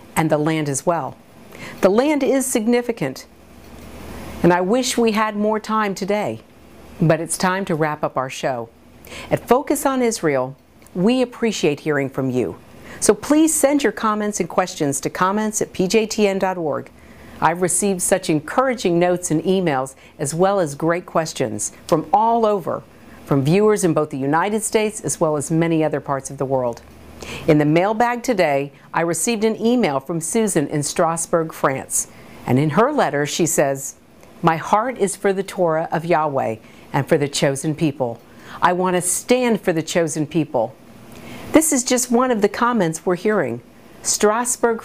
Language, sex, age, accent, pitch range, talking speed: English, female, 50-69, American, 145-215 Hz, 170 wpm